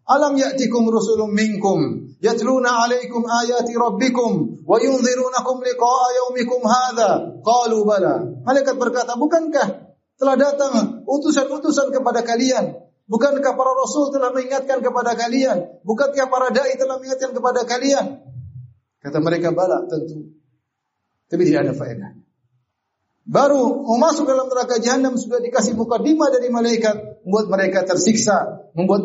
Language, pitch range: Indonesian, 195-260 Hz